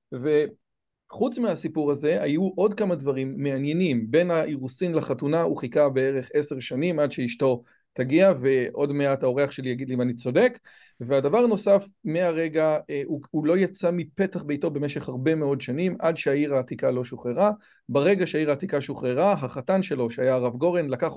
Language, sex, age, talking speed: Hebrew, male, 40-59, 160 wpm